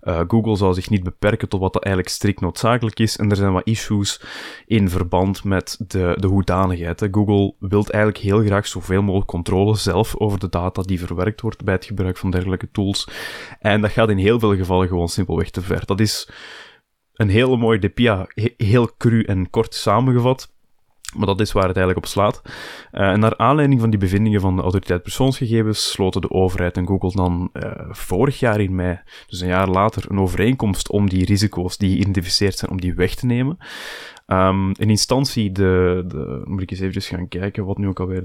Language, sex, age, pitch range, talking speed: Dutch, male, 20-39, 90-110 Hz, 200 wpm